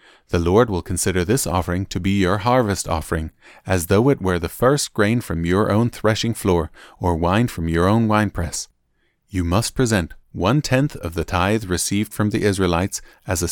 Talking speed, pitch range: 185 wpm, 90-110 Hz